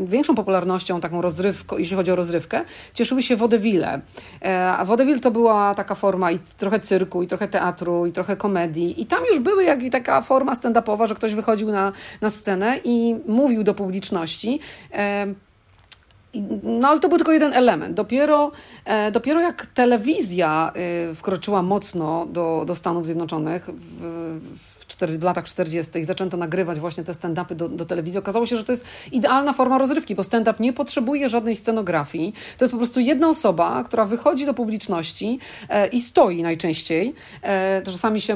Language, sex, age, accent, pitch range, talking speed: Polish, female, 40-59, native, 175-230 Hz, 160 wpm